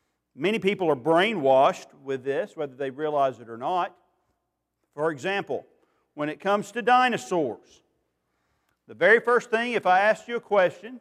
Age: 50-69